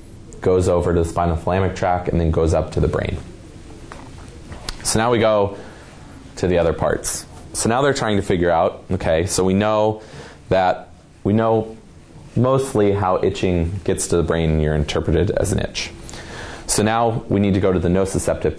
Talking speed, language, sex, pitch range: 185 wpm, English, male, 85-110 Hz